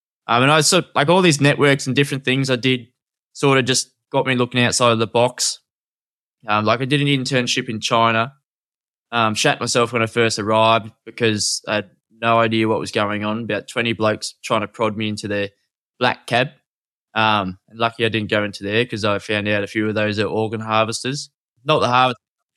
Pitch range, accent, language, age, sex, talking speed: 110-130 Hz, Australian, English, 10-29, male, 220 wpm